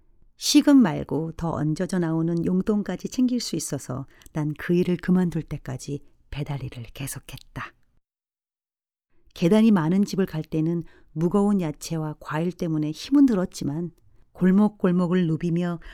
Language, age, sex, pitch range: Korean, 40-59, female, 145-190 Hz